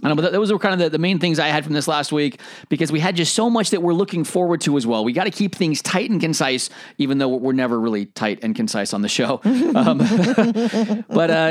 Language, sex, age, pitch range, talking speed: English, male, 30-49, 155-205 Hz, 265 wpm